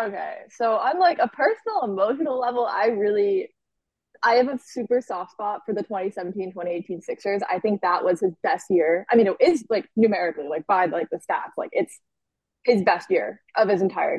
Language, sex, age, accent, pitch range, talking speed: English, female, 20-39, American, 180-235 Hz, 200 wpm